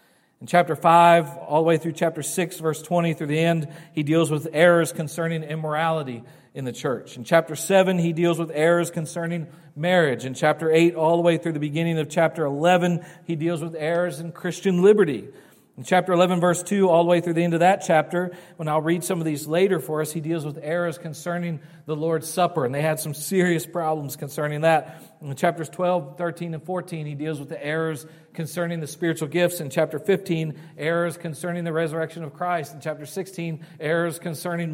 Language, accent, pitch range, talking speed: English, American, 160-185 Hz, 205 wpm